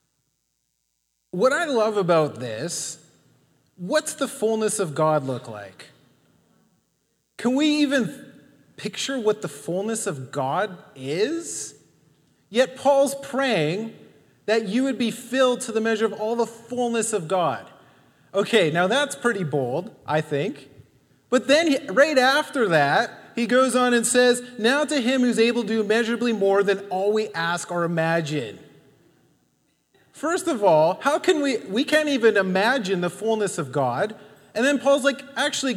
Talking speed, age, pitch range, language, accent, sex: 150 wpm, 30-49, 160-255 Hz, English, American, male